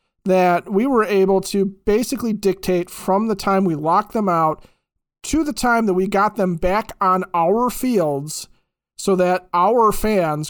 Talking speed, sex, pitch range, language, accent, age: 165 wpm, male, 175-215 Hz, English, American, 40-59